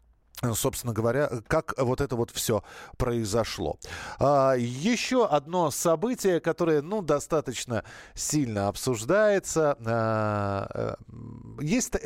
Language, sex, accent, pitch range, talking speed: Russian, male, native, 120-160 Hz, 85 wpm